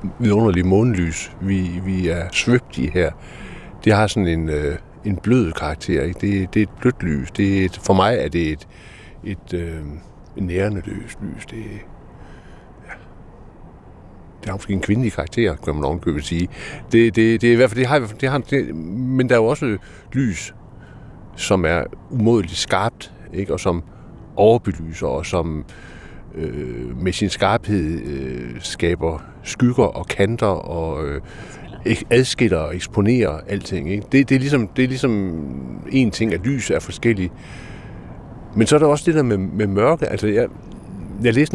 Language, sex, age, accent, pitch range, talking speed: Danish, male, 60-79, native, 85-120 Hz, 170 wpm